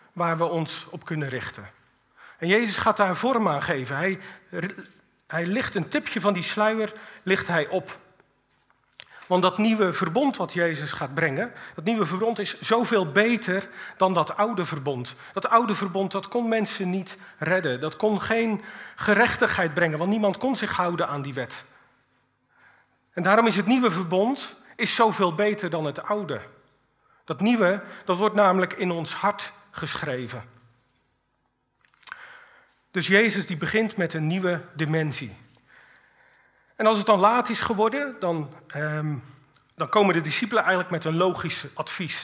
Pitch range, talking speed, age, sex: 165-210 Hz, 155 wpm, 40-59, male